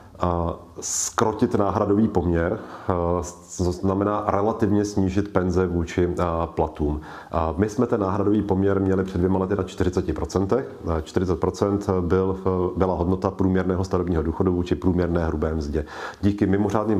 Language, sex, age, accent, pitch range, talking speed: Czech, male, 40-59, native, 90-105 Hz, 125 wpm